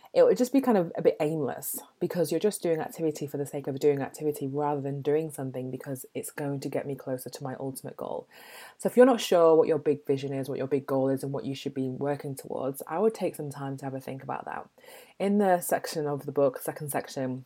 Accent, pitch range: British, 140-165 Hz